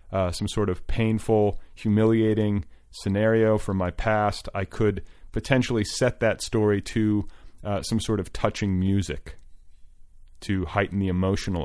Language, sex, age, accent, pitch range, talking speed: English, male, 30-49, American, 85-105 Hz, 140 wpm